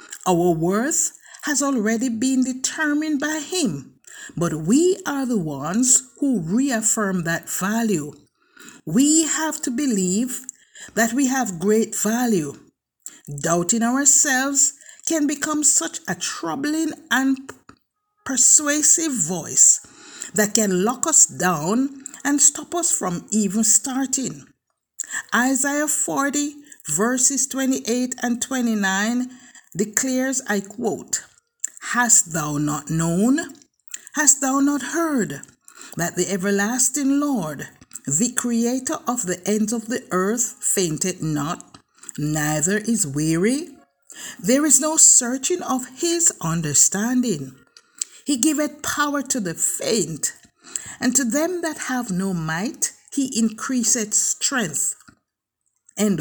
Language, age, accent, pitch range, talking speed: English, 50-69, Nigerian, 205-290 Hz, 110 wpm